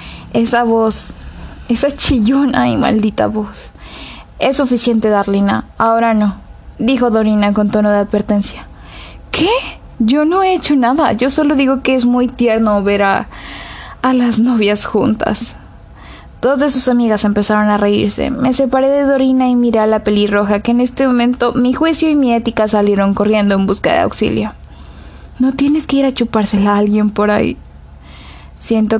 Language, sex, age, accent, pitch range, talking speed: Spanish, female, 10-29, Mexican, 205-245 Hz, 165 wpm